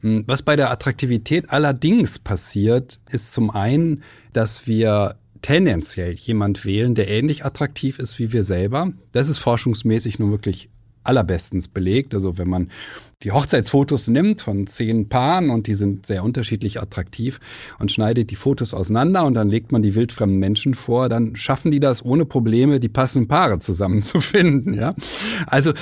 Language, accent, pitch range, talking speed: German, German, 100-135 Hz, 155 wpm